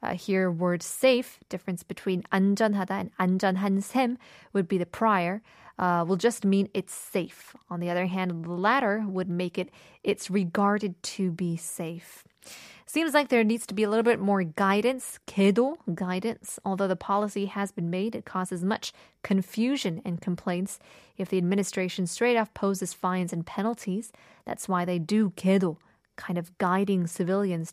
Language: Korean